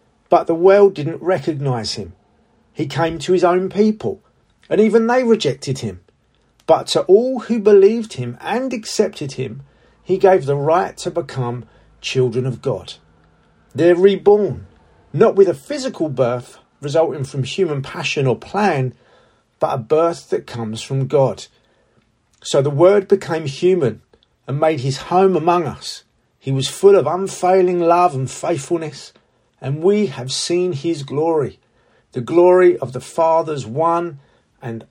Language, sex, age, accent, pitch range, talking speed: English, male, 40-59, British, 130-180 Hz, 150 wpm